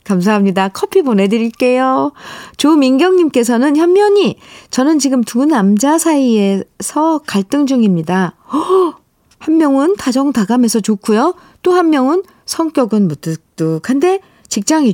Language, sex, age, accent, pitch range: Korean, female, 40-59, native, 200-285 Hz